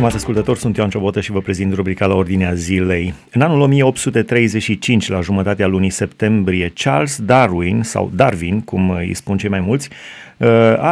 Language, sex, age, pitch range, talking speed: Romanian, male, 30-49, 95-115 Hz, 165 wpm